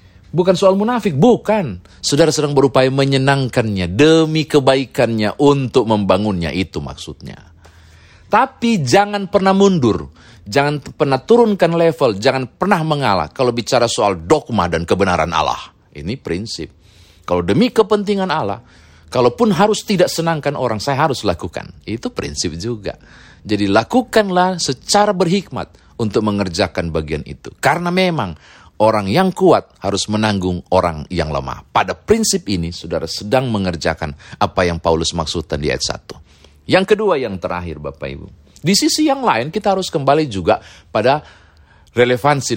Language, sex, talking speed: Indonesian, male, 135 wpm